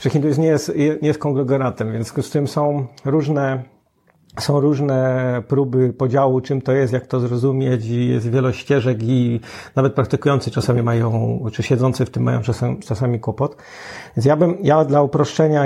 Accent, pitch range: native, 120-145 Hz